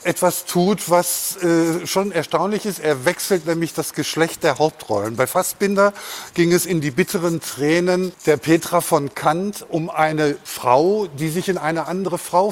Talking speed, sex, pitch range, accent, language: 170 wpm, male, 145-185 Hz, German, German